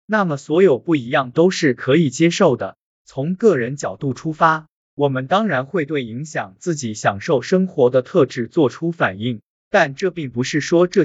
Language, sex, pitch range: Chinese, male, 125-180 Hz